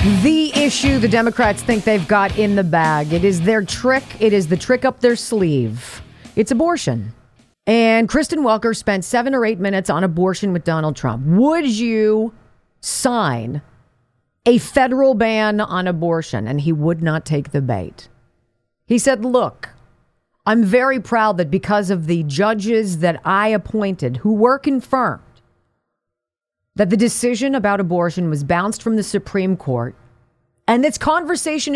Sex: female